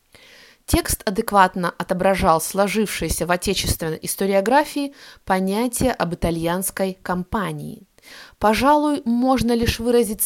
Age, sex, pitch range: 20-39, female, 185-250 Hz